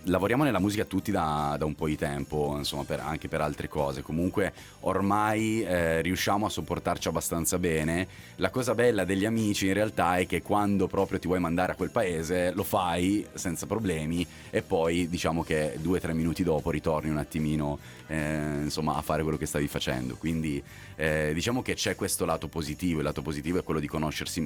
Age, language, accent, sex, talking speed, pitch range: 30-49, Italian, native, male, 195 wpm, 80-95 Hz